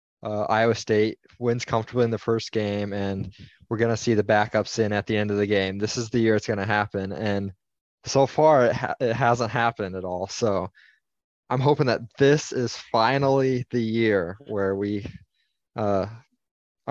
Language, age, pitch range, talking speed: English, 20-39, 100-115 Hz, 185 wpm